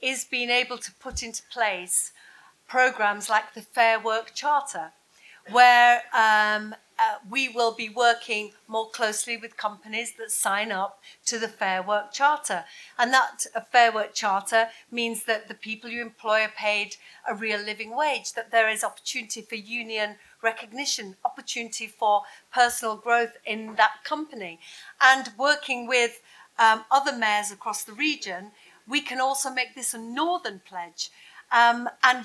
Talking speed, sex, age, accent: 155 wpm, female, 50-69, British